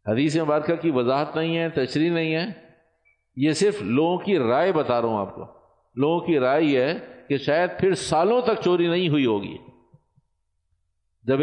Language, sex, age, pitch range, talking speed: Urdu, male, 50-69, 105-160 Hz, 185 wpm